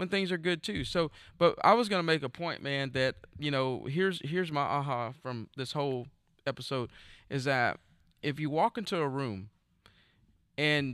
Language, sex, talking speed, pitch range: English, male, 180 wpm, 125-155 Hz